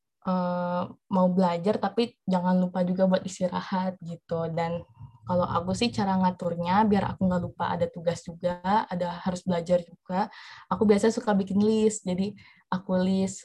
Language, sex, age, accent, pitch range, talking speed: Indonesian, female, 20-39, native, 180-205 Hz, 155 wpm